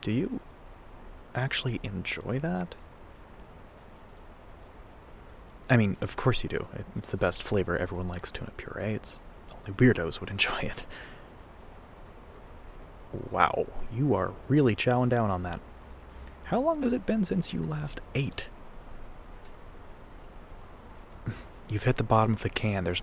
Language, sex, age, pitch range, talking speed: English, male, 30-49, 80-110 Hz, 130 wpm